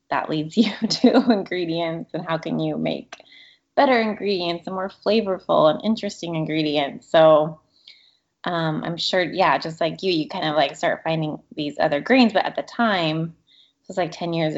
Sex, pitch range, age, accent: female, 155-195 Hz, 20-39, American